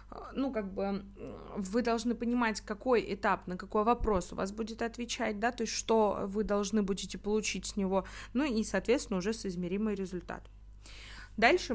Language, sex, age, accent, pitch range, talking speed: Russian, female, 20-39, native, 185-235 Hz, 165 wpm